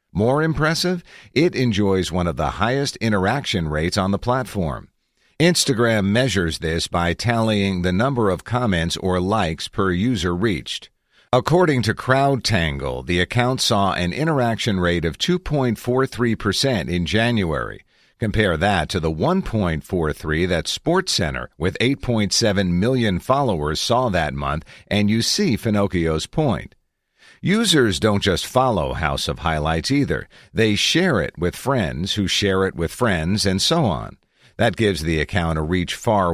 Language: English